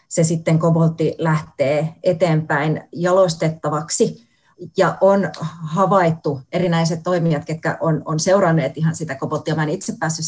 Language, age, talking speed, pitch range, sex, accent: Finnish, 30-49, 130 wpm, 150-180 Hz, female, native